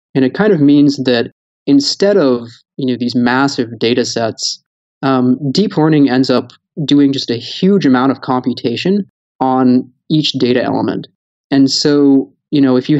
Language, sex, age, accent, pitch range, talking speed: English, male, 20-39, American, 120-140 Hz, 160 wpm